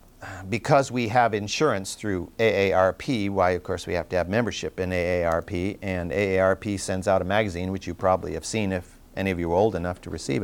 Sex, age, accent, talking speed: male, 50-69, American, 205 wpm